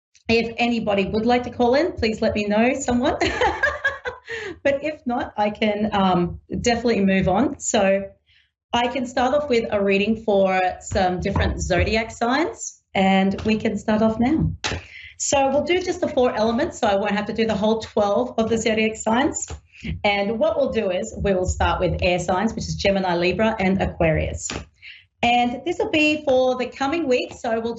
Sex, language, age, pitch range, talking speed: female, English, 40-59, 185-255 Hz, 190 wpm